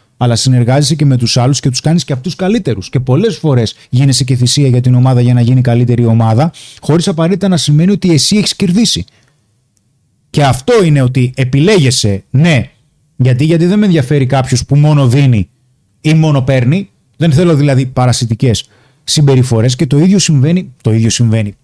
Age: 30-49